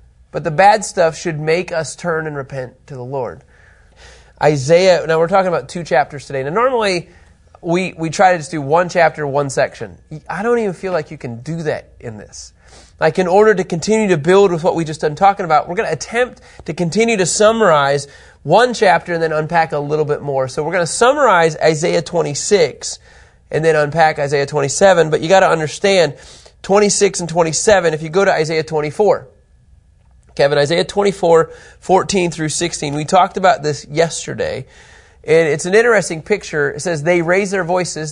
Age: 30-49